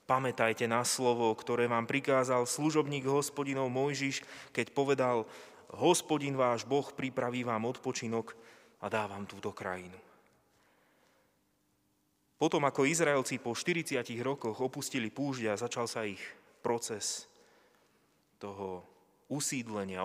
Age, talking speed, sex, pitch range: 20-39, 105 wpm, male, 105-130 Hz